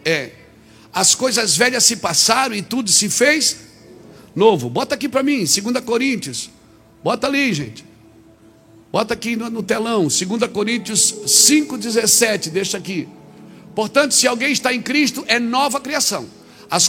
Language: Portuguese